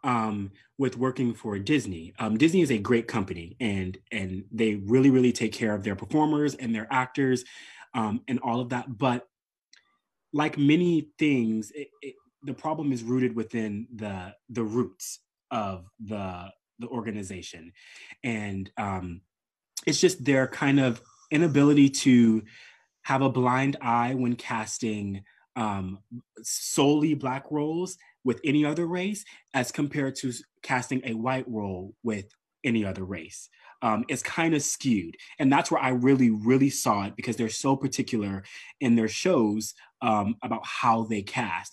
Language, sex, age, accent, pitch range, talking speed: English, male, 30-49, American, 110-145 Hz, 150 wpm